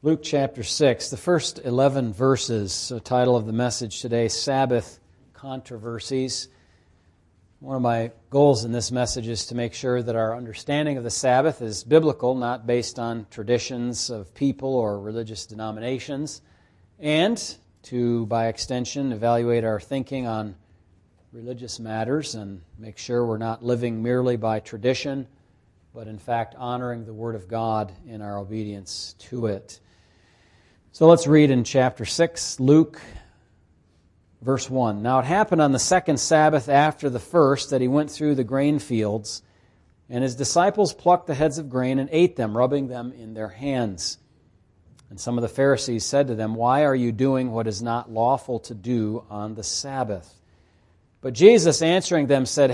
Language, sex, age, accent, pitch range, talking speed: English, male, 40-59, American, 110-140 Hz, 165 wpm